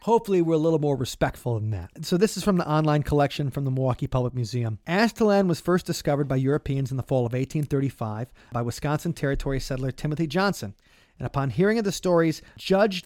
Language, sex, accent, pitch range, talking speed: English, male, American, 130-165 Hz, 200 wpm